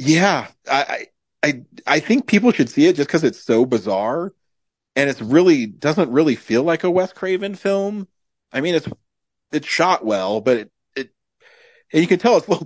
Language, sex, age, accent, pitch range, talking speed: English, male, 40-59, American, 115-170 Hz, 190 wpm